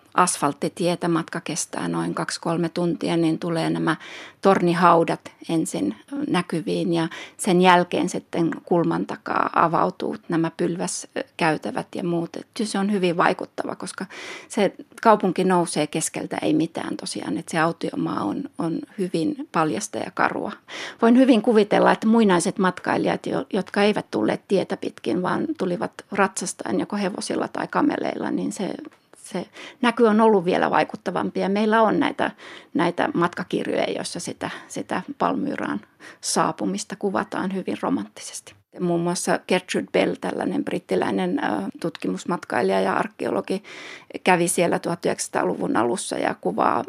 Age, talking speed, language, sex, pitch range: 30-49, 125 wpm, Finnish, female, 170-225 Hz